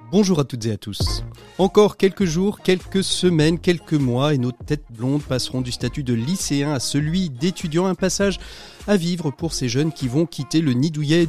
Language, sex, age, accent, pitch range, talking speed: French, male, 40-59, French, 130-170 Hz, 195 wpm